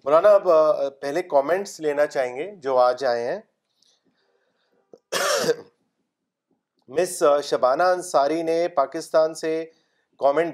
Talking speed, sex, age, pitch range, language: 95 wpm, male, 30-49, 145-180 Hz, Urdu